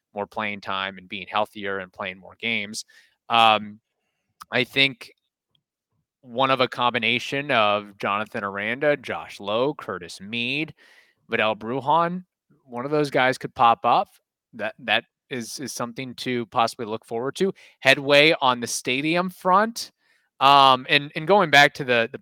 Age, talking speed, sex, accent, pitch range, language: 20-39, 150 wpm, male, American, 110-145 Hz, English